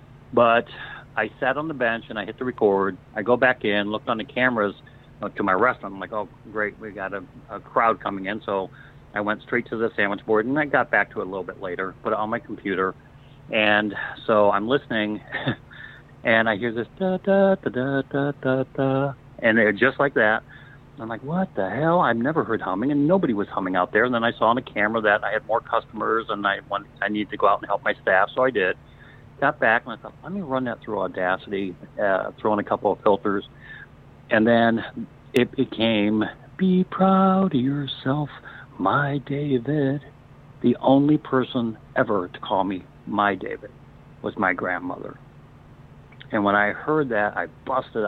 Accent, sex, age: American, male, 40-59